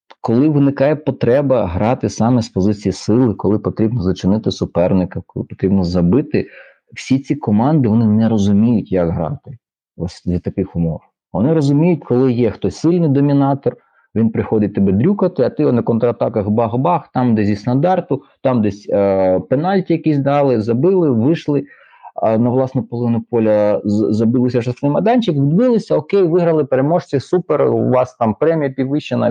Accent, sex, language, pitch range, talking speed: native, male, Ukrainian, 105-140 Hz, 145 wpm